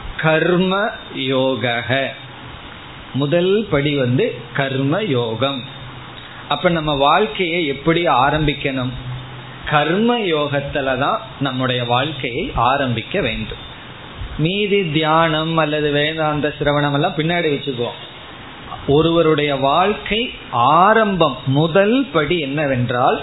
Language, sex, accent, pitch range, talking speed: Tamil, male, native, 135-165 Hz, 75 wpm